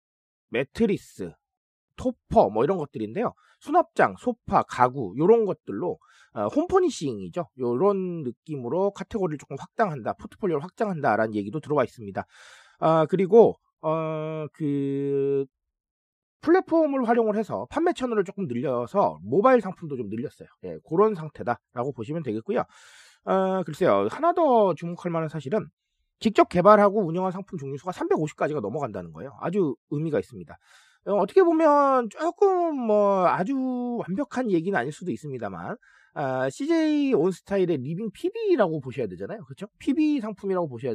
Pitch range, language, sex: 150-235 Hz, Korean, male